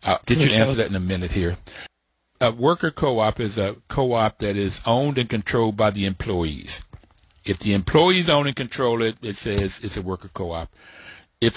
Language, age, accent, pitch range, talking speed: English, 60-79, American, 100-125 Hz, 190 wpm